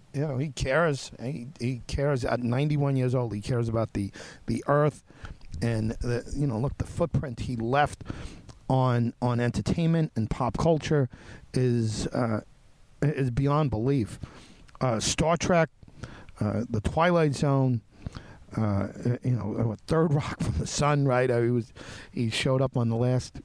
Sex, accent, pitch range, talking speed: male, American, 115-155 Hz, 160 wpm